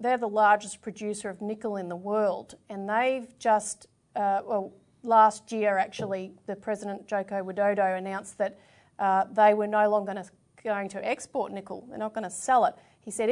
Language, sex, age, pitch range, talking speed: English, female, 40-59, 205-240 Hz, 180 wpm